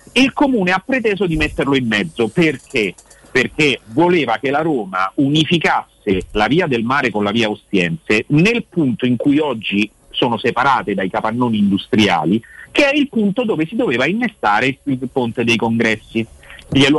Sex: male